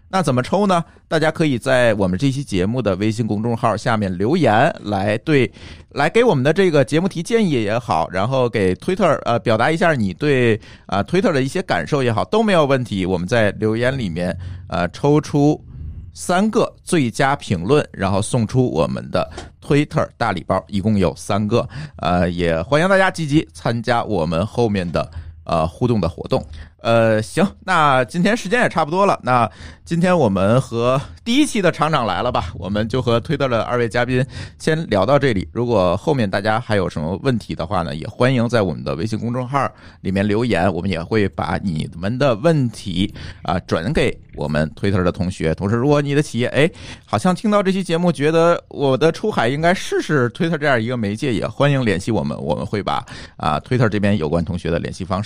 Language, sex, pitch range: Chinese, male, 95-145 Hz